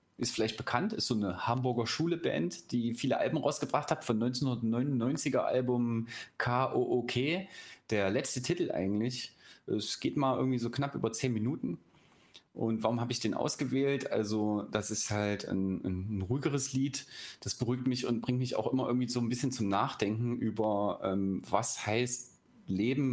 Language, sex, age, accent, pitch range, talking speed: German, male, 30-49, German, 105-130 Hz, 165 wpm